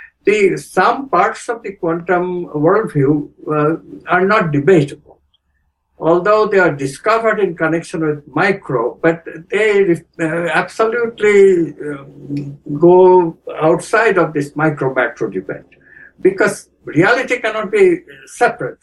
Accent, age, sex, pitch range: Indian, 60-79, male, 150-190 Hz